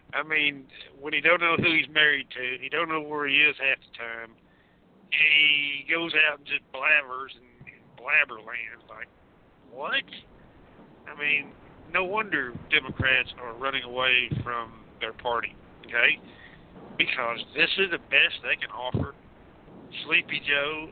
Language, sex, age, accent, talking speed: English, male, 50-69, American, 150 wpm